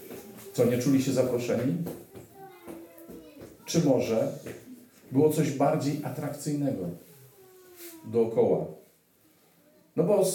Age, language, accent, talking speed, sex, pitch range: 40-59, Polish, native, 85 wpm, male, 110-150 Hz